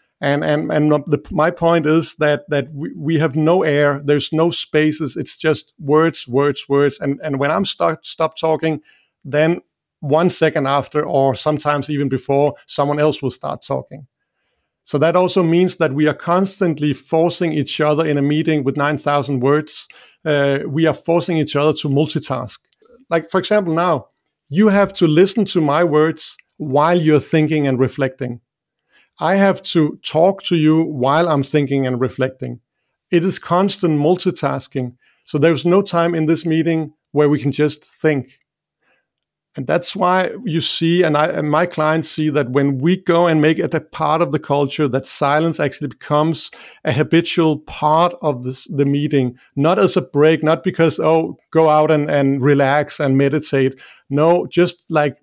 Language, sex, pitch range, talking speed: English, male, 145-165 Hz, 175 wpm